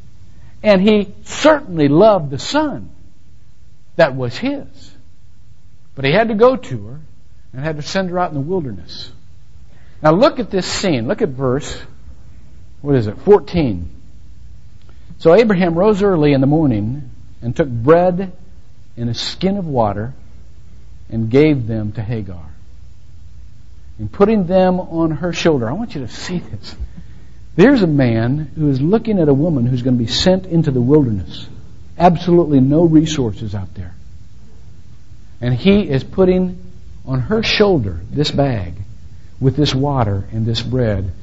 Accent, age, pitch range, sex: American, 50-69, 95-155 Hz, male